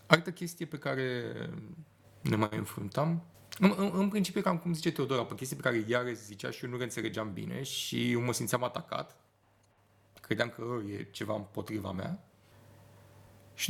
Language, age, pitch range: Romanian, 30-49, 115-155 Hz